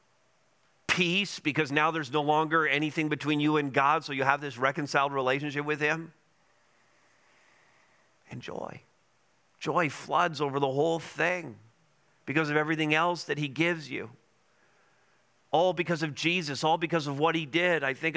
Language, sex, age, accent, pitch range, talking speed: English, male, 40-59, American, 150-180 Hz, 155 wpm